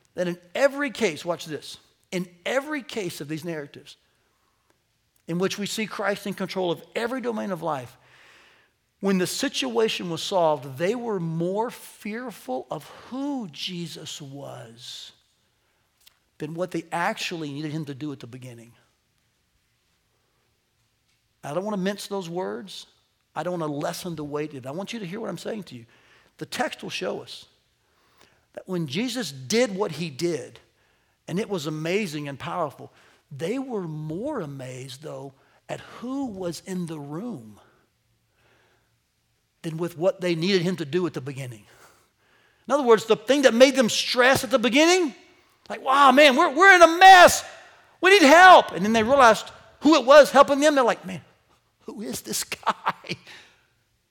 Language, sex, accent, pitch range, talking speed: English, male, American, 145-230 Hz, 170 wpm